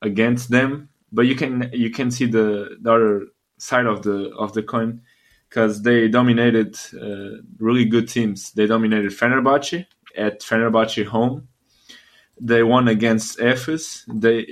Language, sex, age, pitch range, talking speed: English, male, 20-39, 110-120 Hz, 145 wpm